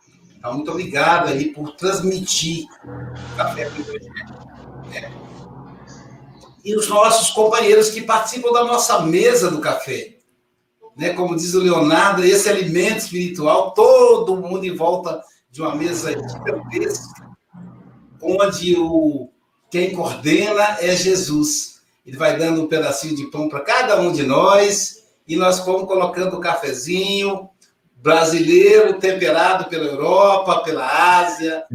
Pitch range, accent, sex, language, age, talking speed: 170-230 Hz, Brazilian, male, Portuguese, 60-79, 120 wpm